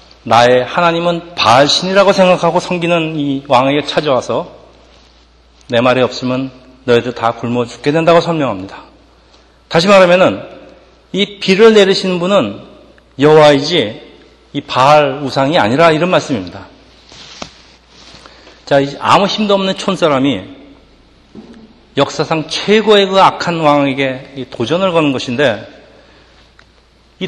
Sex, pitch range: male, 135-185 Hz